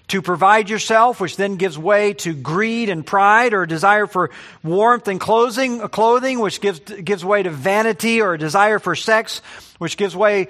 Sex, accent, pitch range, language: male, American, 135-205 Hz, English